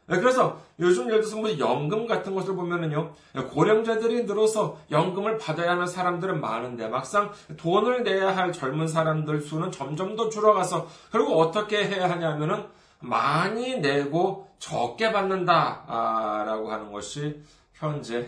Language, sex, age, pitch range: Korean, male, 40-59, 125-190 Hz